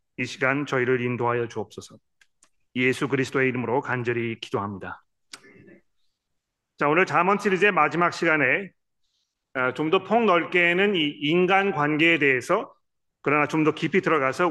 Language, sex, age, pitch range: Korean, male, 40-59, 135-170 Hz